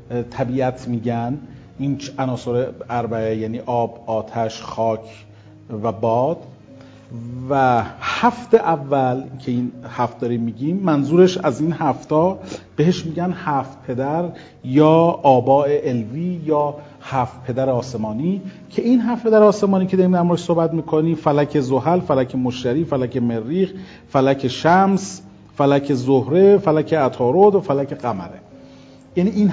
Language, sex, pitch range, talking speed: Persian, male, 125-180 Hz, 125 wpm